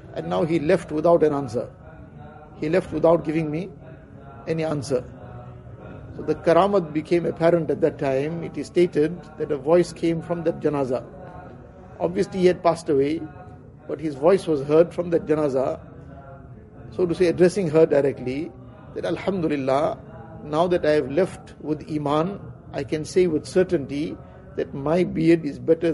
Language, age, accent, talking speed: English, 50-69, Indian, 160 wpm